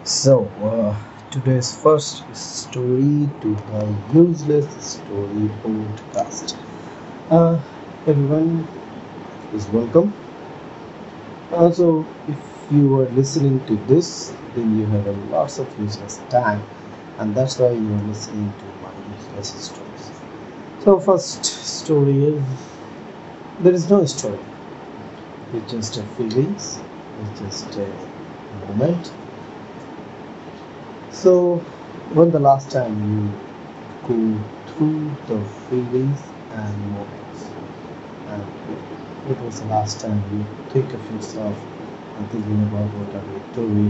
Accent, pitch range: native, 105-145 Hz